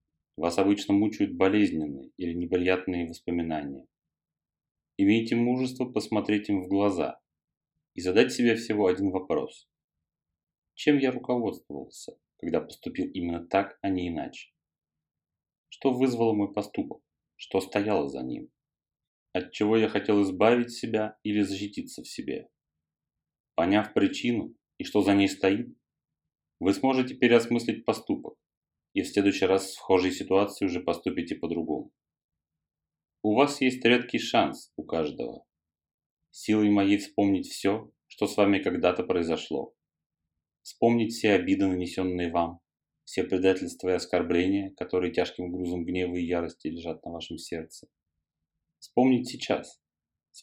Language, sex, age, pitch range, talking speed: Russian, male, 30-49, 90-105 Hz, 125 wpm